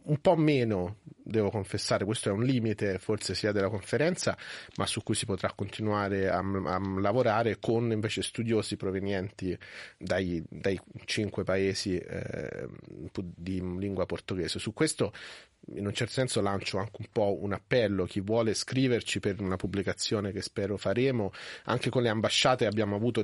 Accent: native